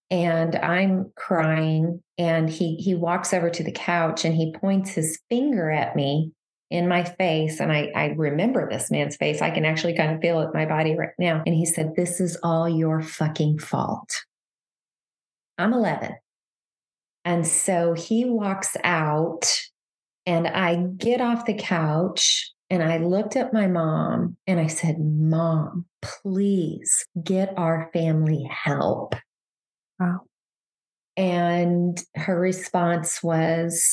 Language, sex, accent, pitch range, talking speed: English, female, American, 165-195 Hz, 145 wpm